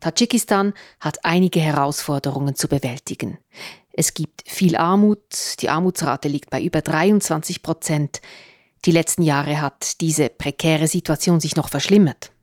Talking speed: 130 wpm